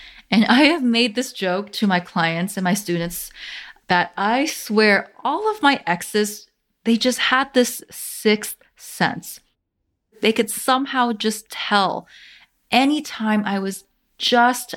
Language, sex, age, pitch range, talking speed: English, female, 30-49, 175-235 Hz, 140 wpm